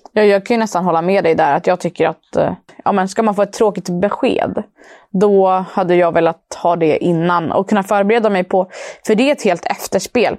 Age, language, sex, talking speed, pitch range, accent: 20-39, Swedish, female, 225 wpm, 180-220 Hz, native